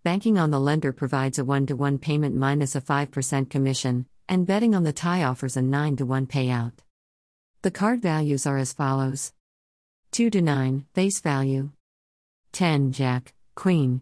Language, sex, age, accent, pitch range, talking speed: English, female, 50-69, American, 130-165 Hz, 150 wpm